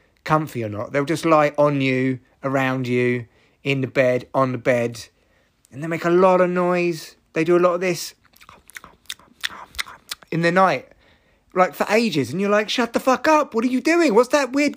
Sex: male